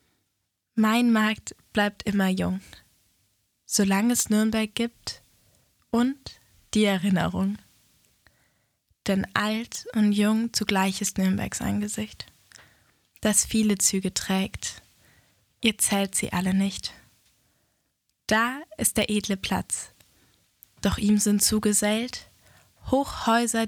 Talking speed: 100 wpm